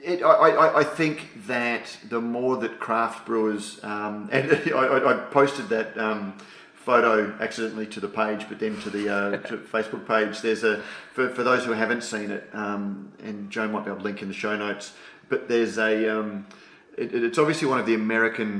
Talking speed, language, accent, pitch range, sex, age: 190 wpm, English, Australian, 105-120 Hz, male, 30-49